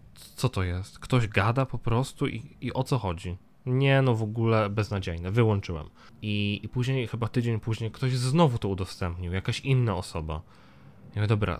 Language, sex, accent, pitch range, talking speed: Polish, male, native, 95-120 Hz, 165 wpm